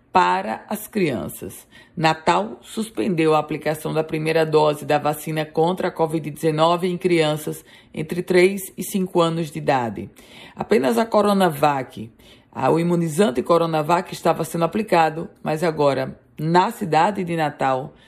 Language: Portuguese